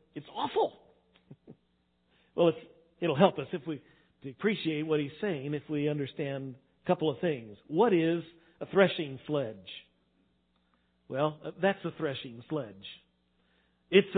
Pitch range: 150-195 Hz